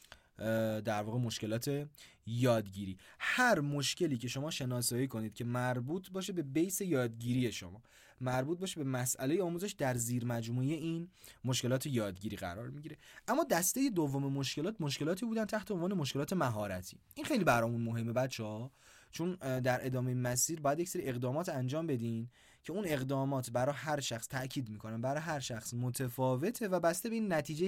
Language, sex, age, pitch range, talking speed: Persian, male, 20-39, 115-150 Hz, 155 wpm